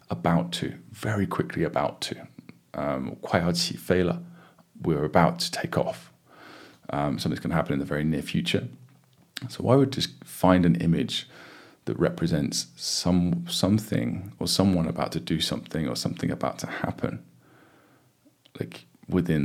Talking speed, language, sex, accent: 140 wpm, English, male, British